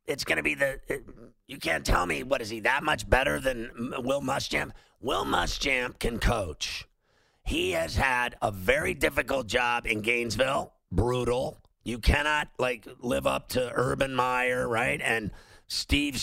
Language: English